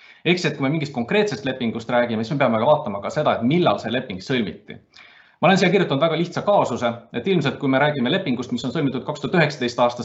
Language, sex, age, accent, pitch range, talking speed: English, male, 30-49, Finnish, 115-145 Hz, 225 wpm